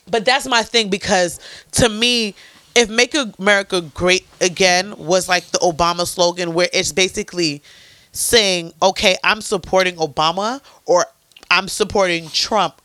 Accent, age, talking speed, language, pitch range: American, 30-49, 135 wpm, English, 175-225 Hz